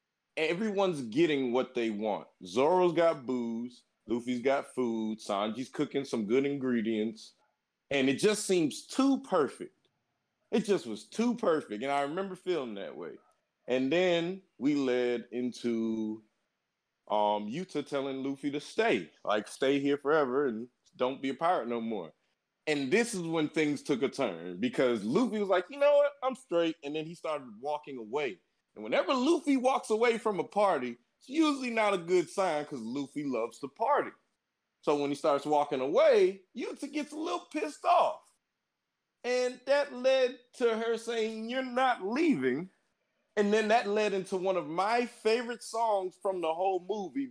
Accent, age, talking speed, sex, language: American, 30-49, 165 wpm, male, English